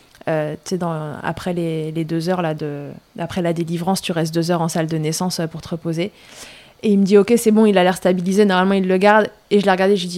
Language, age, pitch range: French, 20-39, 170-200 Hz